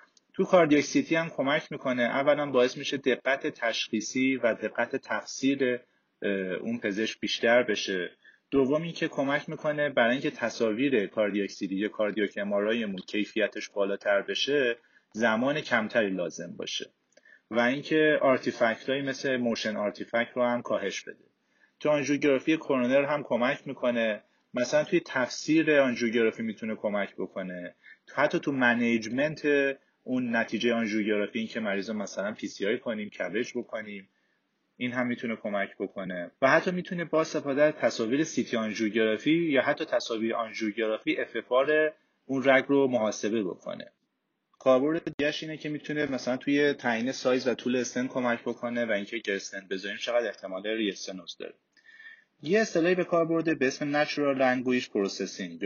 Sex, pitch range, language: male, 110-145 Hz, Persian